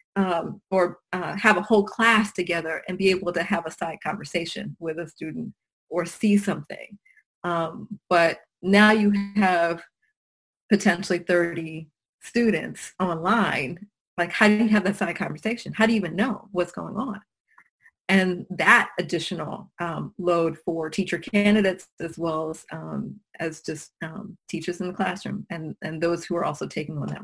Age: 30-49